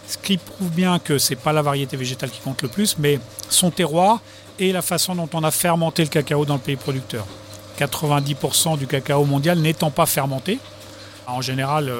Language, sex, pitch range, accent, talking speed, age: French, male, 130-165 Hz, French, 200 wpm, 40-59